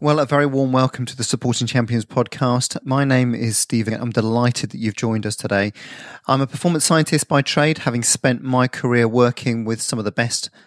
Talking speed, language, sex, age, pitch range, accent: 210 wpm, English, male, 30-49, 115-135 Hz, British